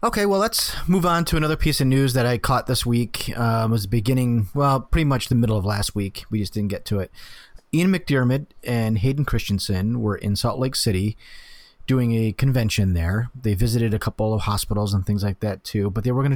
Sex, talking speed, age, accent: male, 225 wpm, 30-49, American